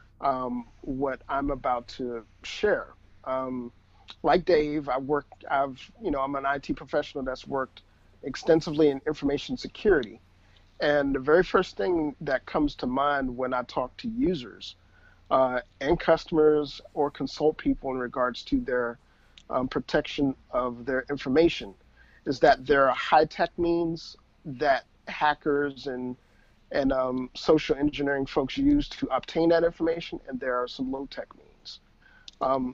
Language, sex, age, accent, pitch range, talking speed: English, male, 40-59, American, 130-160 Hz, 145 wpm